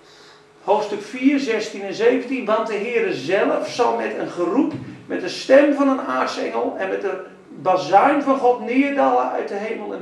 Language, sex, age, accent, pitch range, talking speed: Dutch, male, 40-59, Dutch, 195-270 Hz, 180 wpm